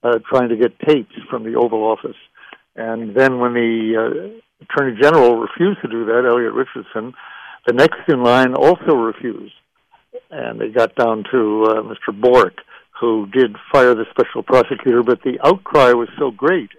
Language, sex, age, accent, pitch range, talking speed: English, male, 60-79, American, 115-140 Hz, 170 wpm